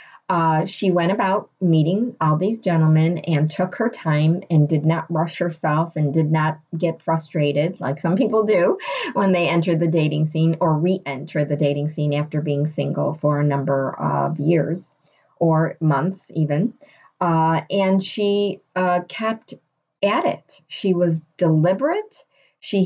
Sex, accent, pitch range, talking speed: female, American, 160-195 Hz, 155 wpm